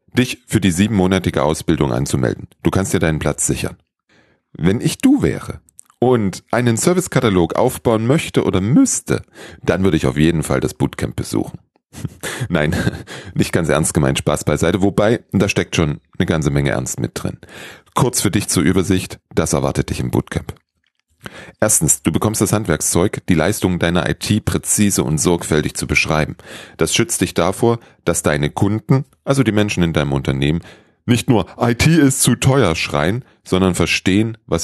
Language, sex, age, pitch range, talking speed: German, male, 40-59, 85-115 Hz, 165 wpm